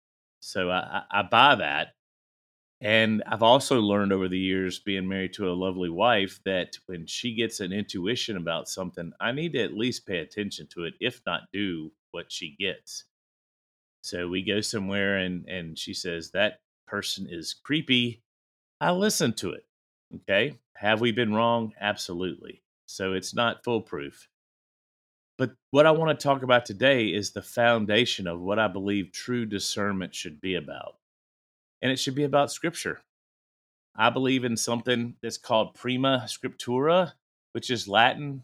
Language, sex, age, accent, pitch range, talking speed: English, male, 30-49, American, 95-120 Hz, 160 wpm